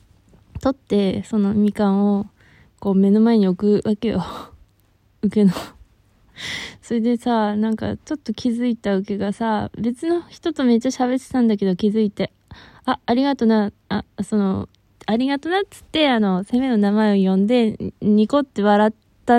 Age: 20-39